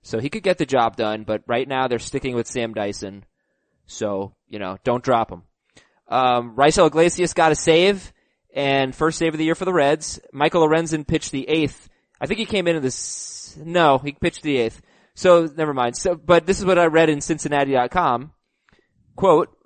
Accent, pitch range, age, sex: American, 130-175 Hz, 20-39, male